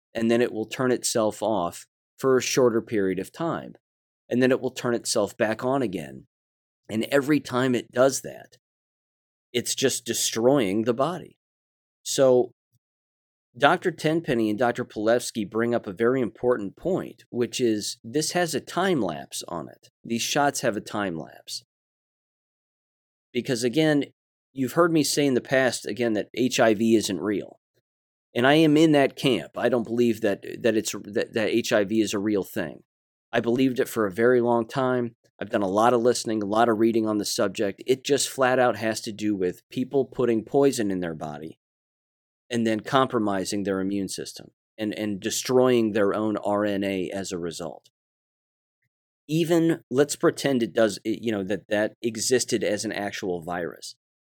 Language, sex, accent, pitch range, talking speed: English, male, American, 100-125 Hz, 175 wpm